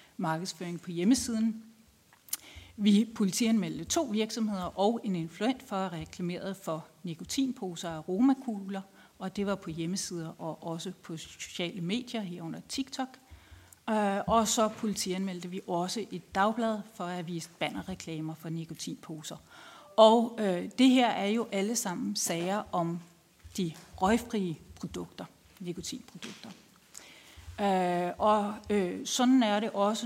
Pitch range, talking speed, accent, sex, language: 170-220 Hz, 125 wpm, native, female, Danish